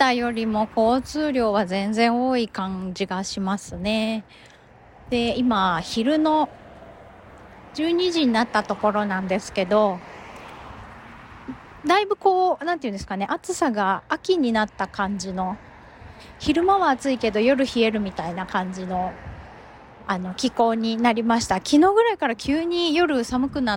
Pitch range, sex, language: 195-295 Hz, female, Japanese